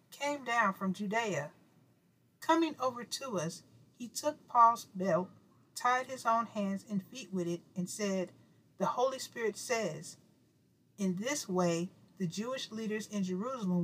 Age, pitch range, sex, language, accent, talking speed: 50-69, 170-220 Hz, female, English, American, 145 wpm